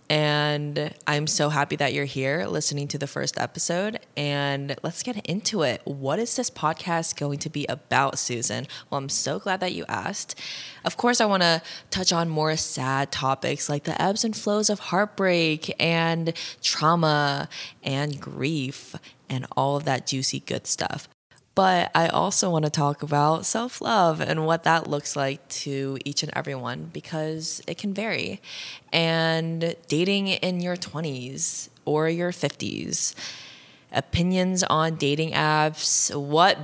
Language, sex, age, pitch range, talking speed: English, female, 20-39, 145-180 Hz, 155 wpm